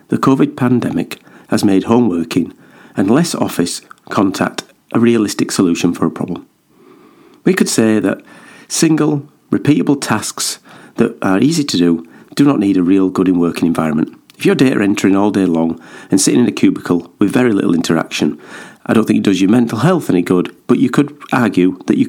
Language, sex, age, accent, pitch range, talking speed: English, male, 50-69, British, 90-115 Hz, 190 wpm